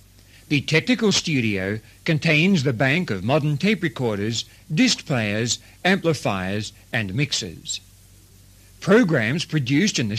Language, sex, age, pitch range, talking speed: English, male, 60-79, 100-165 Hz, 110 wpm